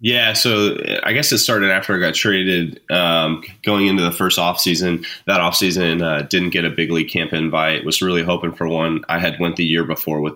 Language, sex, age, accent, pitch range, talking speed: English, male, 20-39, American, 80-90 Hz, 220 wpm